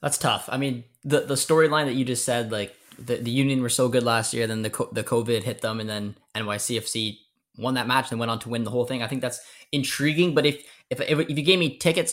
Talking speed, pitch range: 260 wpm, 110-135 Hz